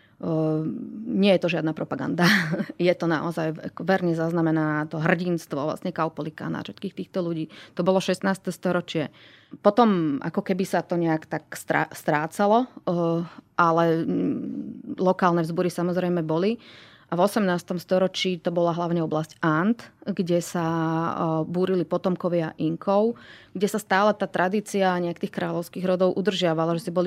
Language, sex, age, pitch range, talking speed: Slovak, female, 30-49, 165-190 Hz, 140 wpm